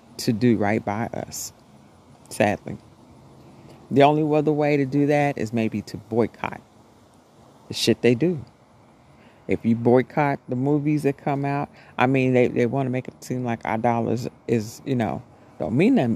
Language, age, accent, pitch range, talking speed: English, 40-59, American, 115-155 Hz, 175 wpm